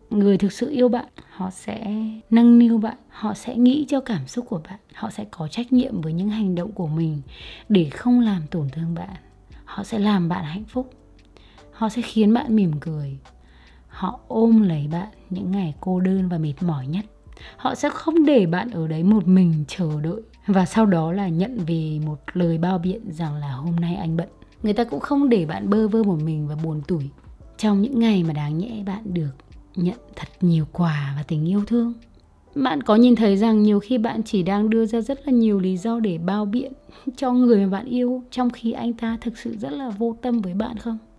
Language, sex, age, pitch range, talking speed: Vietnamese, female, 20-39, 170-230 Hz, 220 wpm